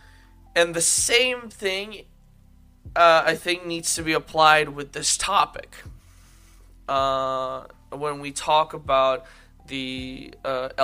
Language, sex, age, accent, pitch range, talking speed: English, male, 20-39, American, 130-160 Hz, 115 wpm